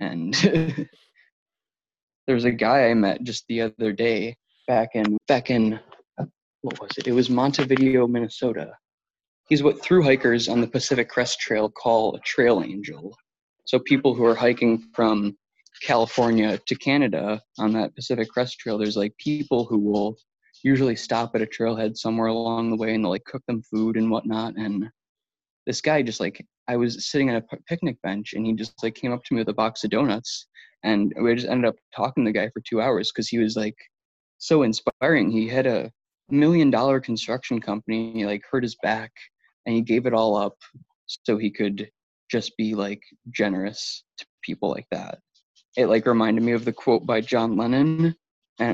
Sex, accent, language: male, American, English